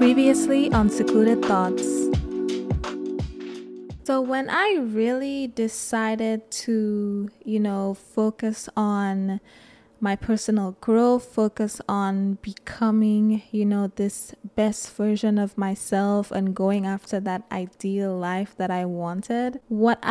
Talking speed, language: 110 wpm, English